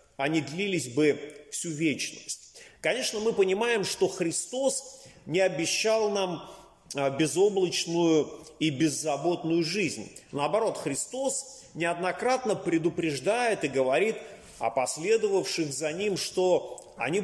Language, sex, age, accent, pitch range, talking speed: Russian, male, 30-49, native, 160-215 Hz, 100 wpm